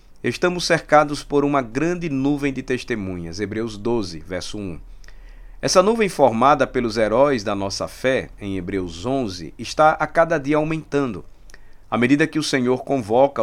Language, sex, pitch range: Portuguese, male, 100-145 Hz